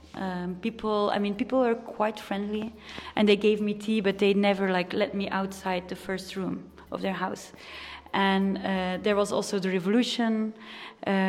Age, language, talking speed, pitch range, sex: 20-39, Italian, 180 wpm, 190-210 Hz, female